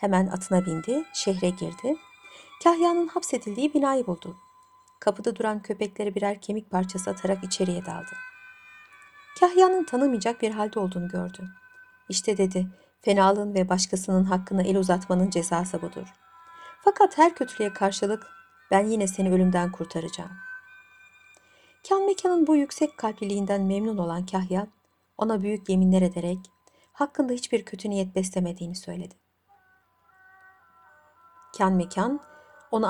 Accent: native